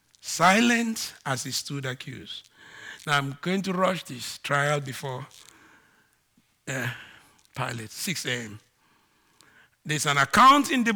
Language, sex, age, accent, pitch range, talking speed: English, male, 50-69, Nigerian, 140-235 Hz, 120 wpm